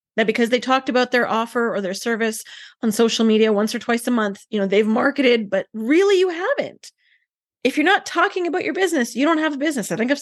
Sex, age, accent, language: female, 20-39, American, English